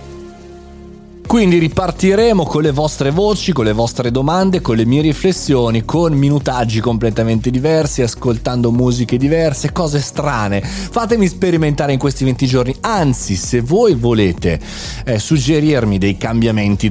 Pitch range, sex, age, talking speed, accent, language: 110-165 Hz, male, 30-49, 130 wpm, native, Italian